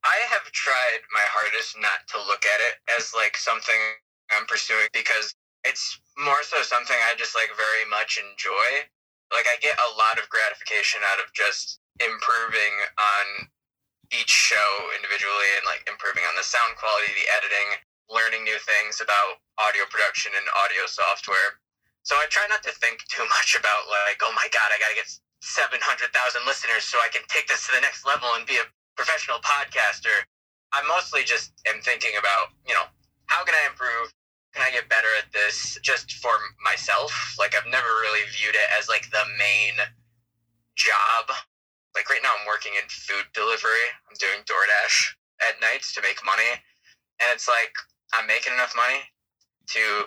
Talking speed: 175 wpm